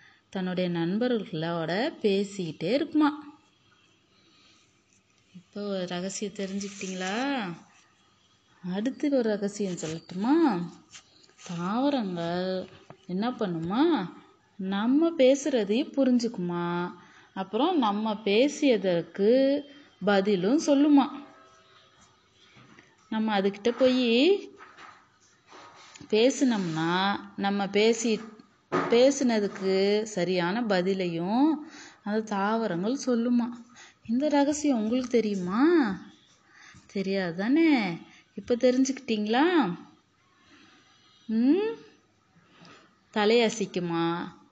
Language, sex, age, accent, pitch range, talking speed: Tamil, female, 20-39, native, 190-265 Hz, 60 wpm